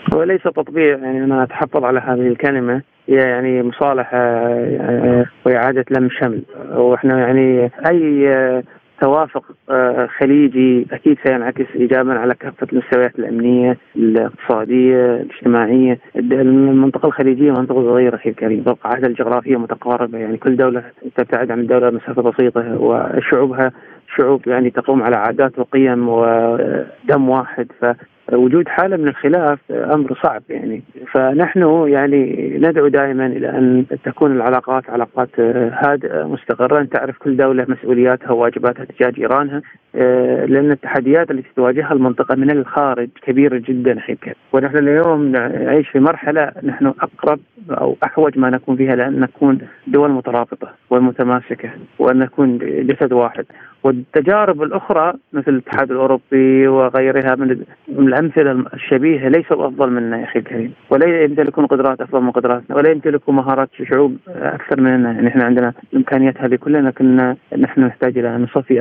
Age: 30-49